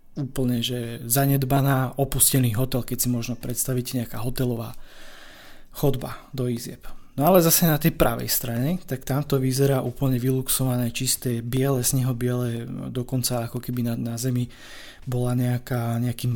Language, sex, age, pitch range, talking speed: Slovak, male, 20-39, 125-135 Hz, 145 wpm